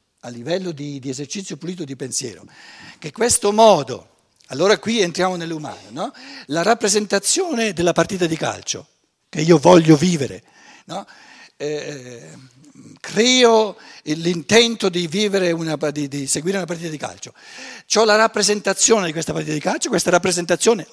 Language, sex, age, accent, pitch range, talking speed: Italian, male, 60-79, native, 150-210 Hz, 130 wpm